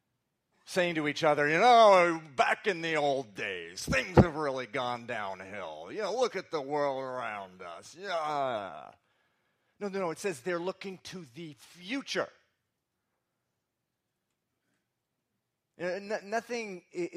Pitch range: 115-175 Hz